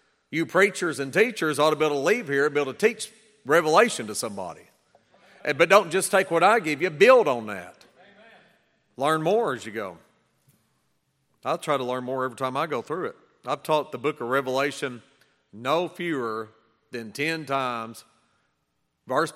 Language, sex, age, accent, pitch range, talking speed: English, male, 40-59, American, 125-165 Hz, 180 wpm